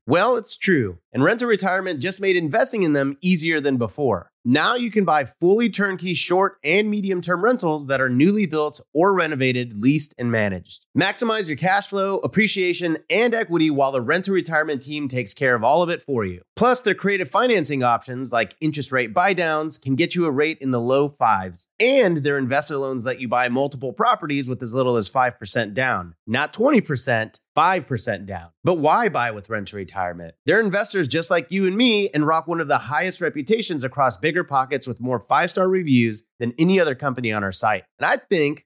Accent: American